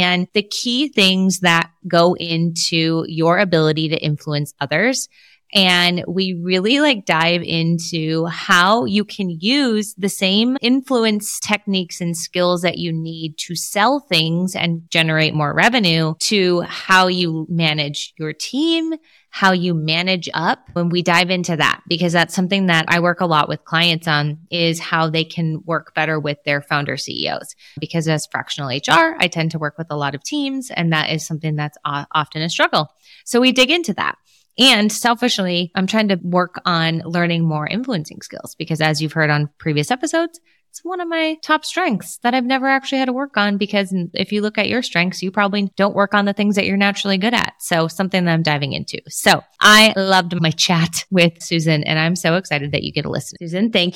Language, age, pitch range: English, 20-39, 165-225 Hz